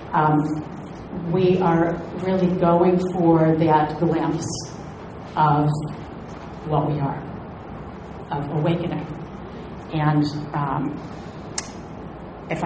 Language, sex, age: English, female, 40-59